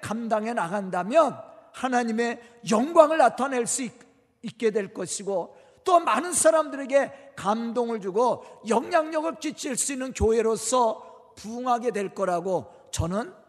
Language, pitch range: Korean, 220-300 Hz